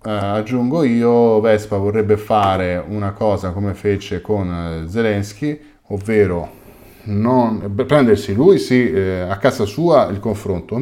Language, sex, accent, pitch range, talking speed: Italian, male, native, 95-115 Hz, 130 wpm